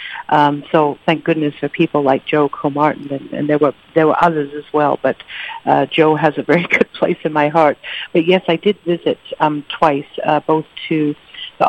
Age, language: 60-79, English